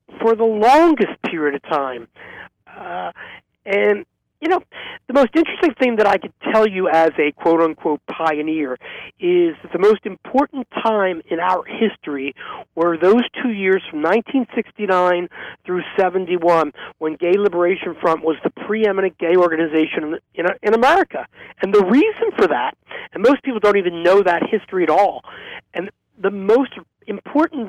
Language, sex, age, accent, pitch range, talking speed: English, male, 50-69, American, 175-260 Hz, 155 wpm